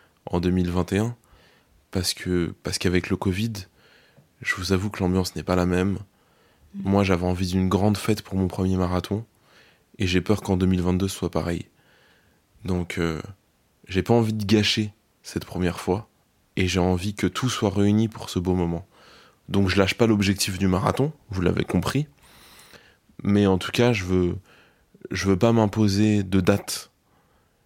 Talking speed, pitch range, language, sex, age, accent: 170 wpm, 90-110 Hz, French, male, 20-39, French